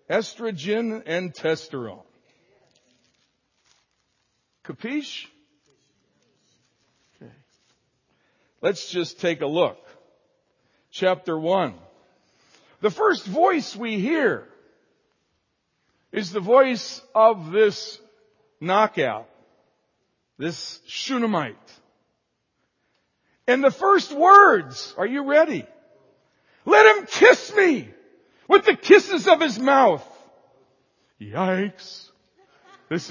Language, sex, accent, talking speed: English, male, American, 80 wpm